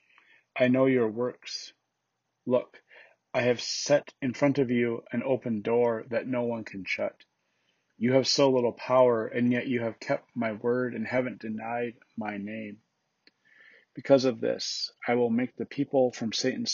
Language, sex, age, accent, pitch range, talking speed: English, male, 30-49, American, 110-130 Hz, 170 wpm